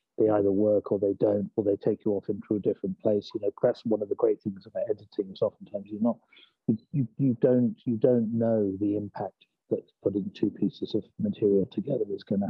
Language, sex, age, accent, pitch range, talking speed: English, male, 50-69, British, 110-145 Hz, 220 wpm